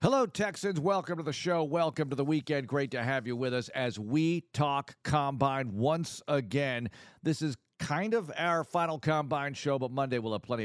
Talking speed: 195 wpm